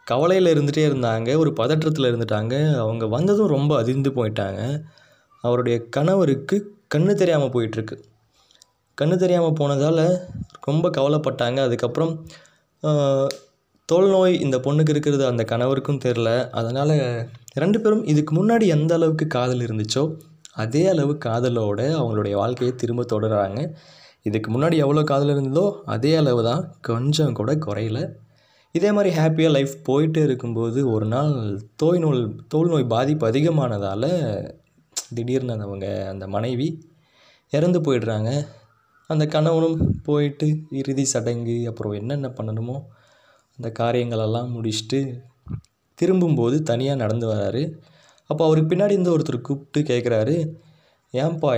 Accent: native